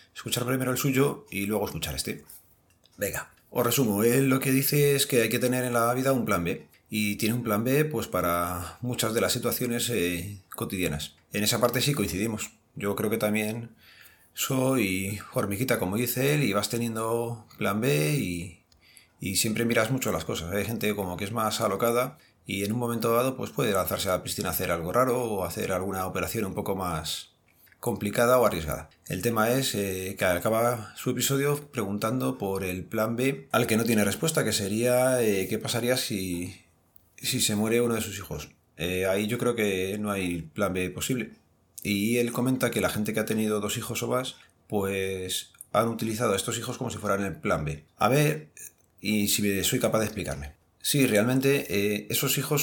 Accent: Spanish